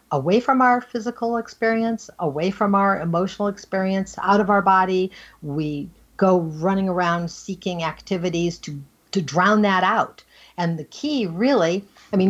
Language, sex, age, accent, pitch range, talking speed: English, female, 50-69, American, 155-200 Hz, 150 wpm